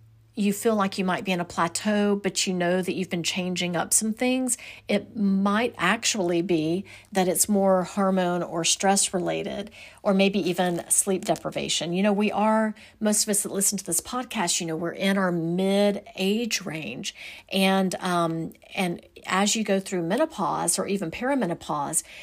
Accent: American